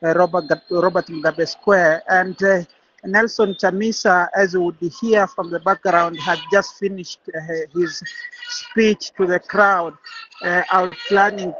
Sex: male